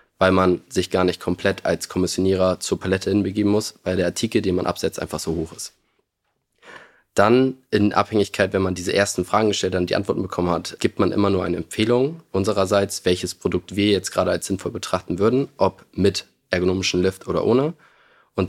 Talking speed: 190 wpm